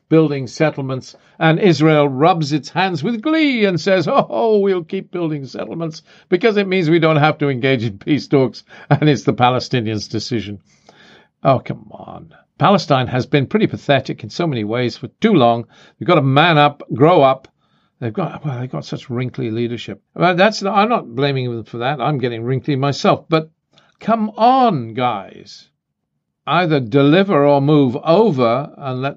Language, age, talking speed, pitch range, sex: English, 50-69, 175 wpm, 130-160 Hz, male